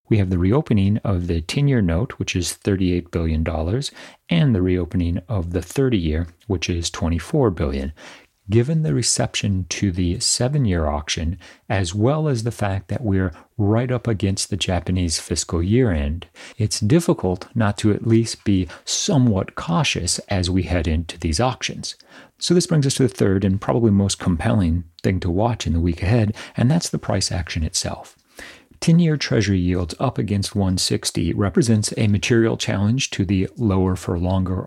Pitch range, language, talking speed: 90-115 Hz, English, 170 wpm